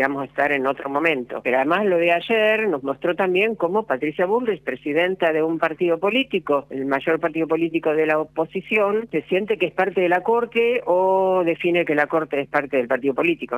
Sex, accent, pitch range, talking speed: female, Argentinian, 135-165 Hz, 210 wpm